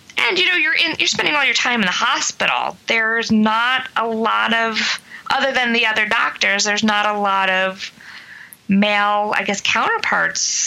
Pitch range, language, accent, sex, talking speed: 185-220 Hz, English, American, female, 180 wpm